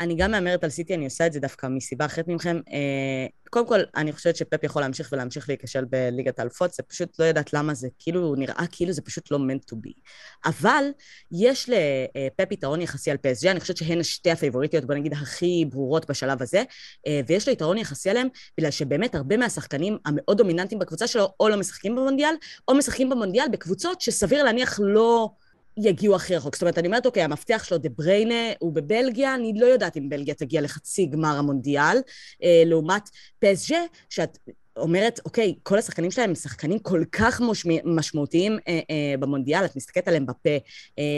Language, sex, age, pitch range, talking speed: Hebrew, female, 20-39, 150-215 Hz, 180 wpm